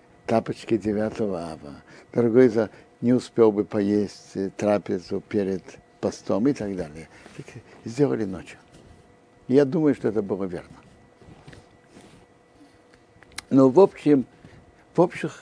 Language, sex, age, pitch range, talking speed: Russian, male, 60-79, 115-155 Hz, 105 wpm